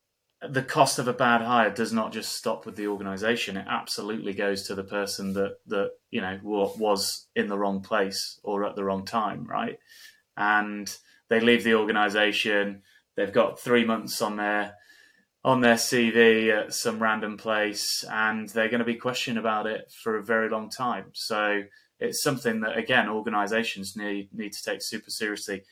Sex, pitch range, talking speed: male, 100-115 Hz, 175 wpm